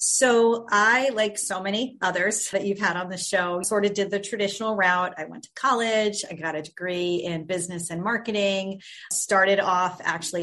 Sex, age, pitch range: female, 30-49, 175-215 Hz